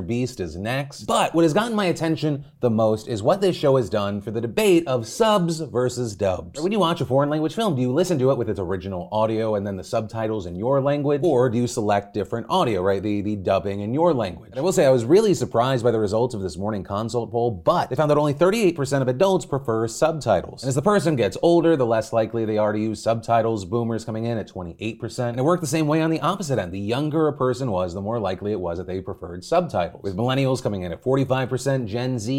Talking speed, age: 255 wpm, 30-49